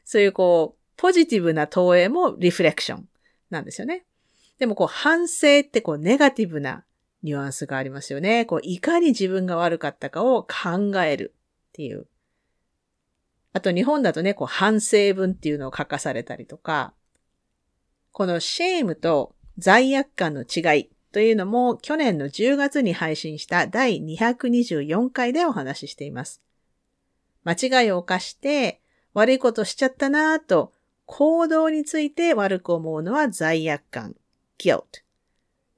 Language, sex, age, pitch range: Japanese, female, 40-59, 170-265 Hz